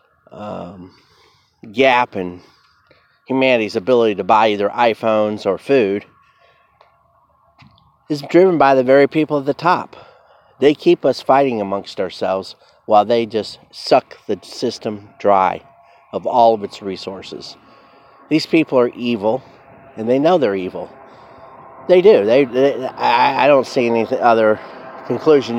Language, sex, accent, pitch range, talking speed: English, male, American, 105-135 Hz, 135 wpm